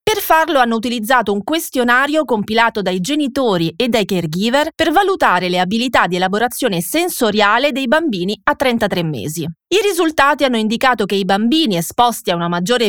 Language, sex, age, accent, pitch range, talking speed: Italian, female, 30-49, native, 190-300 Hz, 165 wpm